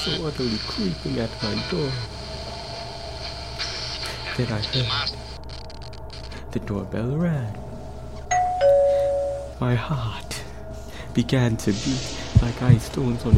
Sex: male